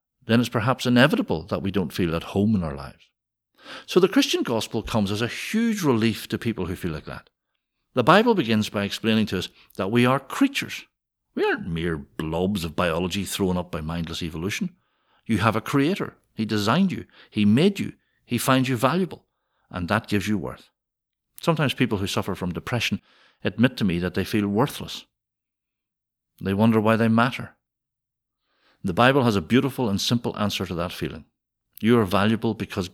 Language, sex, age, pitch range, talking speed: English, male, 60-79, 95-125 Hz, 185 wpm